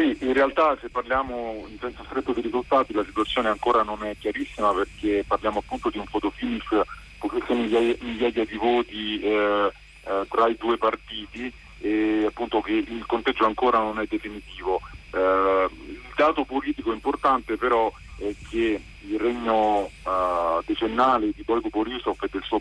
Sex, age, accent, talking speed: male, 40-59, native, 155 wpm